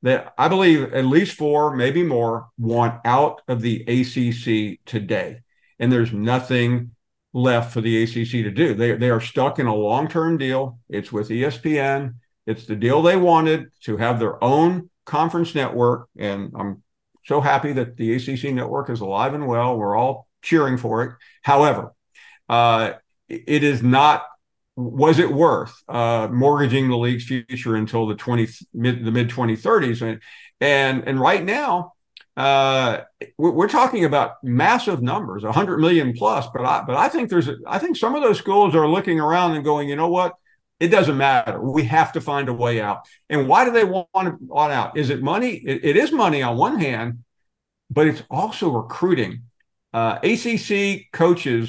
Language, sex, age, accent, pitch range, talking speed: English, male, 50-69, American, 115-155 Hz, 175 wpm